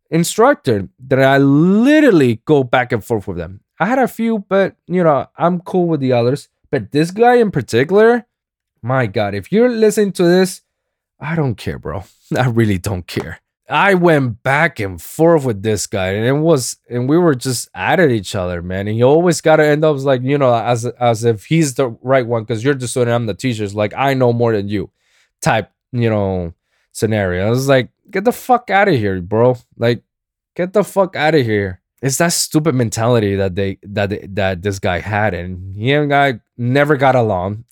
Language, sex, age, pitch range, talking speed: English, male, 20-39, 105-155 Hz, 205 wpm